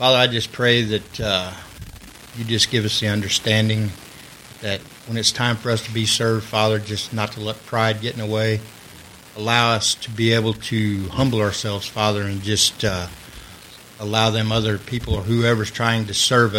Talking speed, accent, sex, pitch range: 190 wpm, American, male, 105-120 Hz